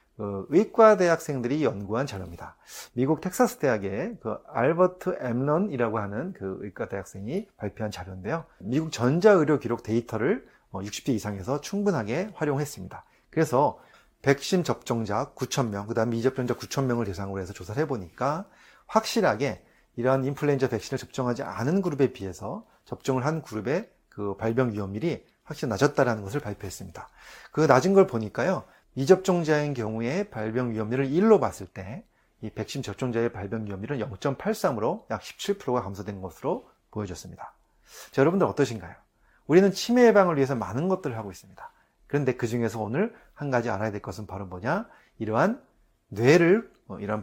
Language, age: Korean, 30-49